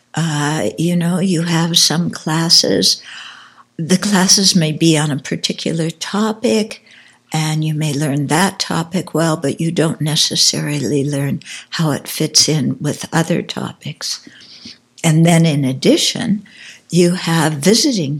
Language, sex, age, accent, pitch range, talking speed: English, female, 60-79, American, 155-190 Hz, 135 wpm